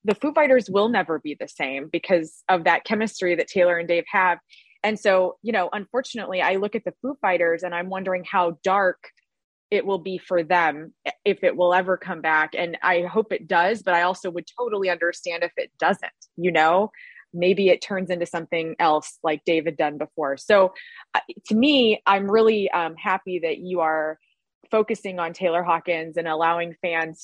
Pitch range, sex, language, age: 165-205 Hz, female, English, 20-39